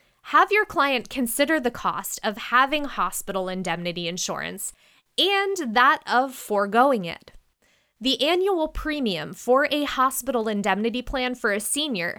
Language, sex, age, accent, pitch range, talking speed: English, female, 20-39, American, 205-285 Hz, 135 wpm